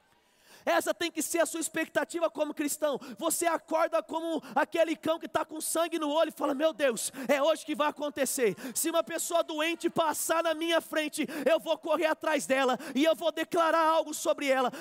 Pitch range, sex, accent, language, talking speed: 285-325 Hz, male, Brazilian, Portuguese, 200 wpm